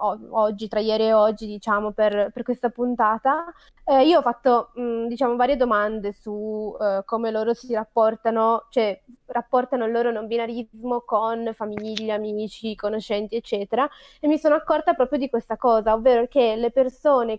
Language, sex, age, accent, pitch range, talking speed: Italian, female, 20-39, native, 220-255 Hz, 160 wpm